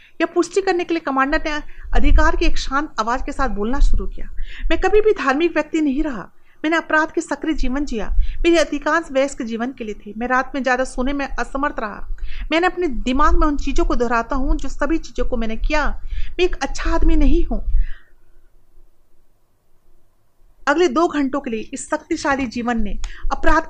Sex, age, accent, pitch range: female, 40-59, native, 235-315 Hz